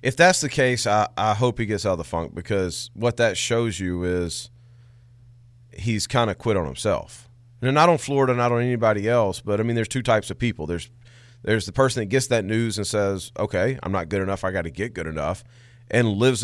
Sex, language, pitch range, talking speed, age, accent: male, English, 100-120 Hz, 235 wpm, 30-49, American